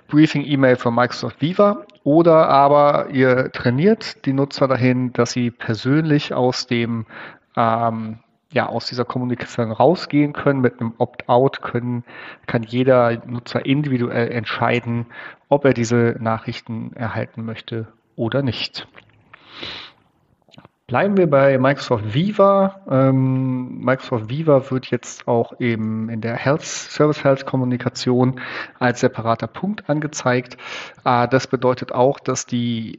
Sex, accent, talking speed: male, German, 115 wpm